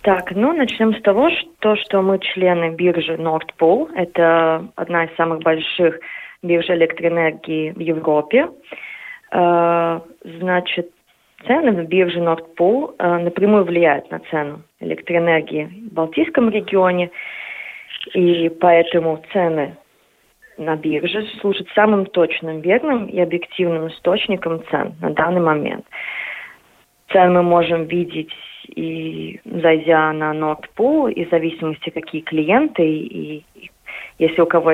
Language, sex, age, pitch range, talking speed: Russian, female, 20-39, 160-190 Hz, 115 wpm